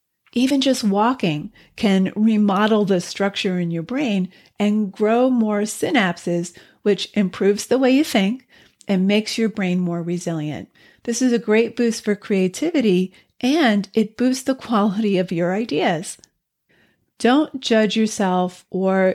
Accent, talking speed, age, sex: American, 140 wpm, 40-59, female